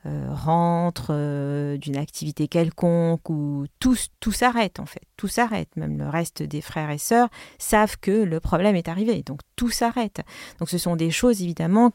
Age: 40-59